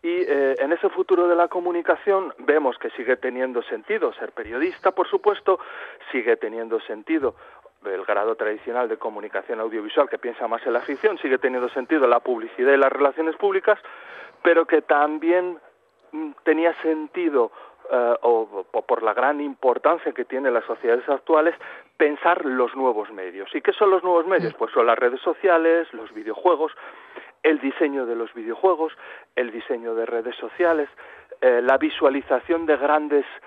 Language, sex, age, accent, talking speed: Spanish, male, 40-59, Spanish, 160 wpm